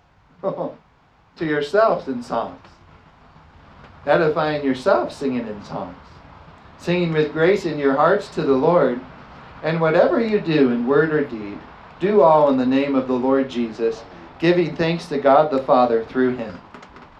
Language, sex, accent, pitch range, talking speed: English, male, American, 120-190 Hz, 155 wpm